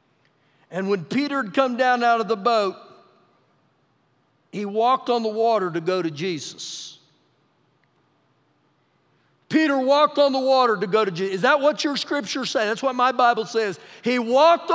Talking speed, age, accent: 165 wpm, 50-69, American